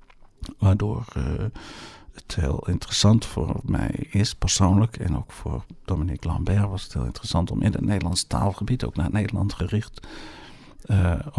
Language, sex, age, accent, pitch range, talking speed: Dutch, male, 50-69, Dutch, 90-110 Hz, 150 wpm